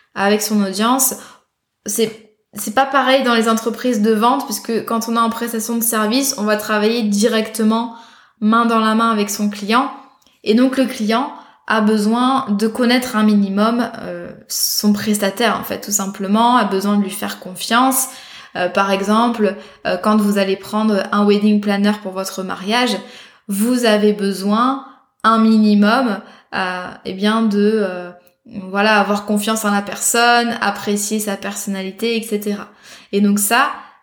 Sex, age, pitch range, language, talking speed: female, 20-39, 205-235 Hz, French, 160 wpm